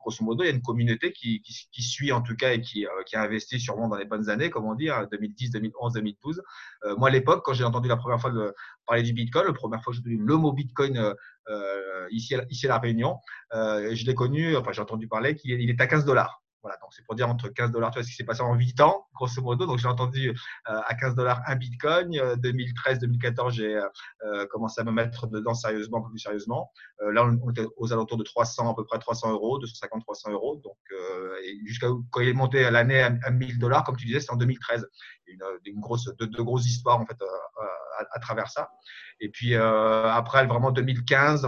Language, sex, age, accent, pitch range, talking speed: French, male, 30-49, French, 110-130 Hz, 245 wpm